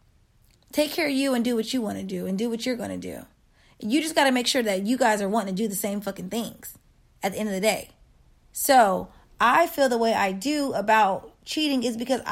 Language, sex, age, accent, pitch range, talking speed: English, female, 20-39, American, 200-250 Hz, 255 wpm